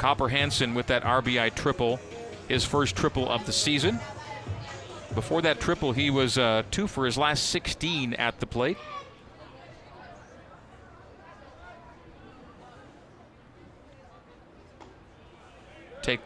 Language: English